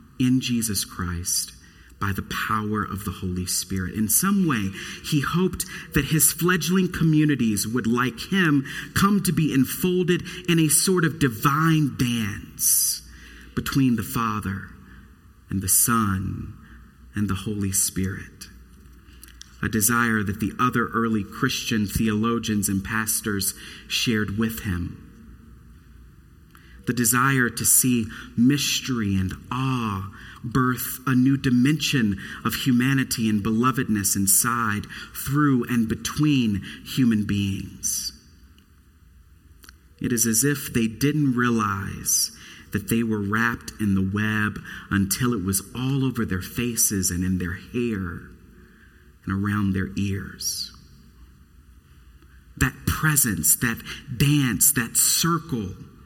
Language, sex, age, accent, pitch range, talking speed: English, male, 40-59, American, 95-125 Hz, 120 wpm